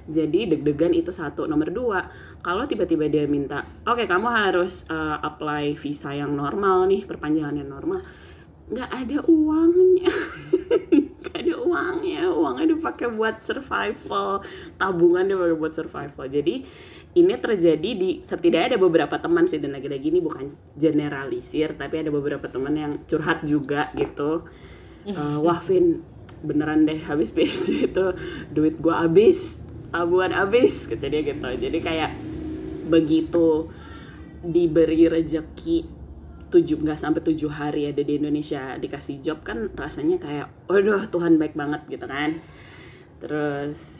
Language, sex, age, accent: Indonesian, female, 20-39, native